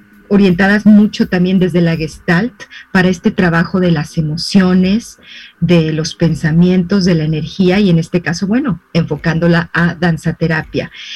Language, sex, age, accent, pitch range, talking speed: Spanish, female, 40-59, Mexican, 170-215 Hz, 140 wpm